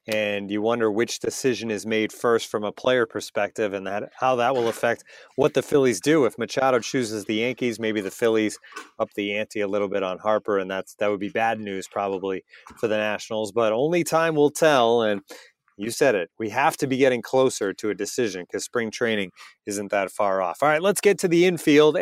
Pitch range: 110-145 Hz